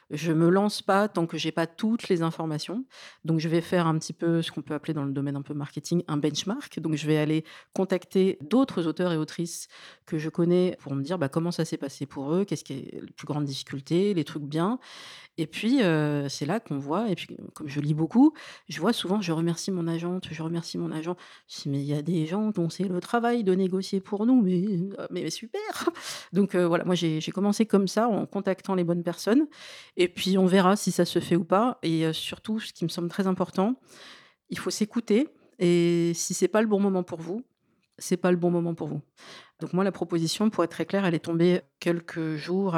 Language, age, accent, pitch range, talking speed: French, 40-59, French, 160-195 Hz, 245 wpm